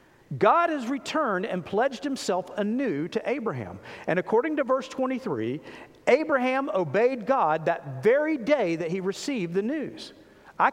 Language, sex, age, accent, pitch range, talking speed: English, male, 50-69, American, 195-295 Hz, 145 wpm